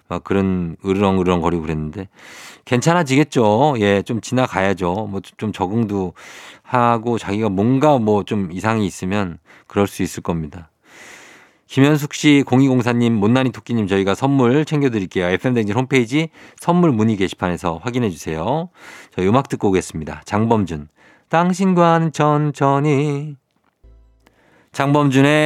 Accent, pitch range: native, 95-140 Hz